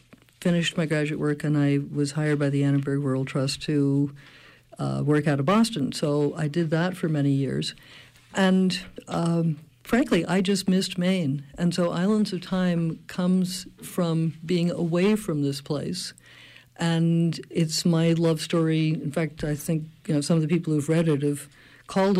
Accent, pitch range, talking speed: American, 145-175 Hz, 175 wpm